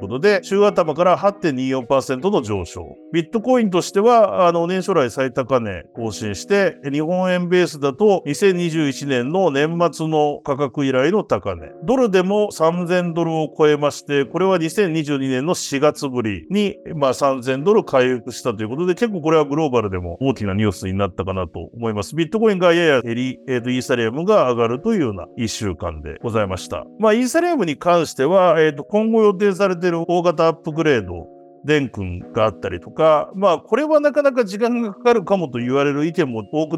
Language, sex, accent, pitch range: Japanese, male, native, 125-185 Hz